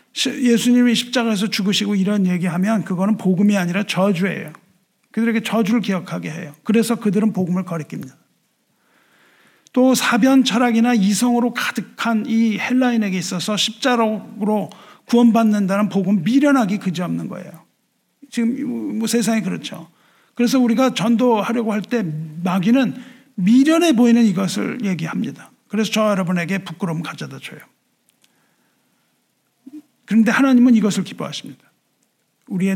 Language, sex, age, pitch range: Korean, male, 50-69, 185-235 Hz